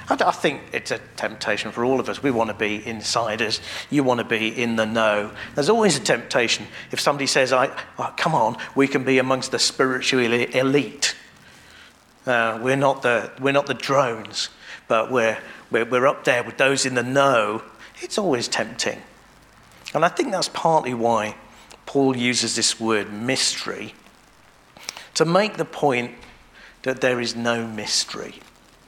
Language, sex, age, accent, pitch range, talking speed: English, male, 50-69, British, 120-145 Hz, 170 wpm